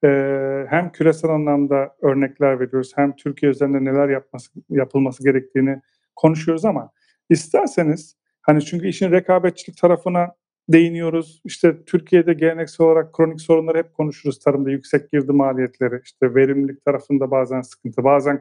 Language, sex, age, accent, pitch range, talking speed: Turkish, male, 40-59, native, 140-175 Hz, 130 wpm